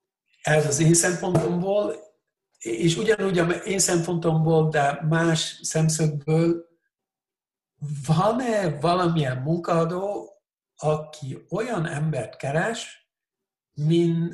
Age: 60-79